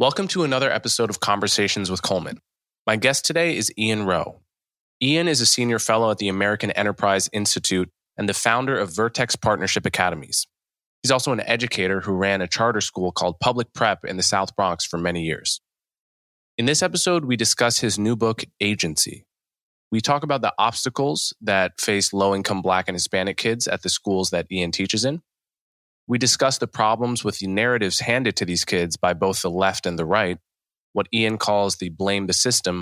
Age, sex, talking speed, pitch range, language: 20-39, male, 185 wpm, 90-115 Hz, English